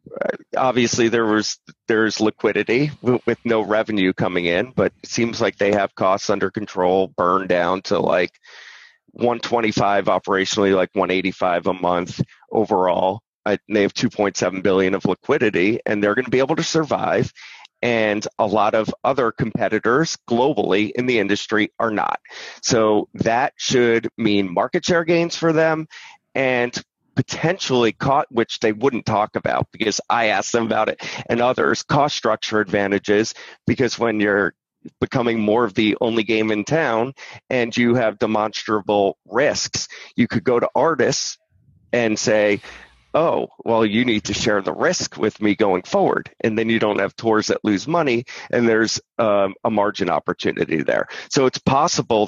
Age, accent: 30-49, American